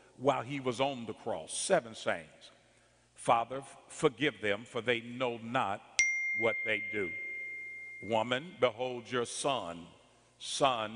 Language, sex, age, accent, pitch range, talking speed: English, male, 50-69, American, 115-160 Hz, 125 wpm